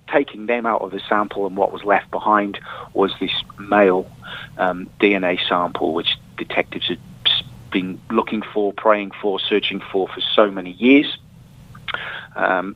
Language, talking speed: English, 150 wpm